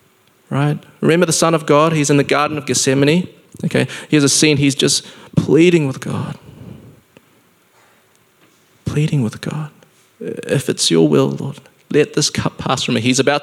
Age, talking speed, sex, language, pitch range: 20-39, 165 wpm, male, English, 115-145 Hz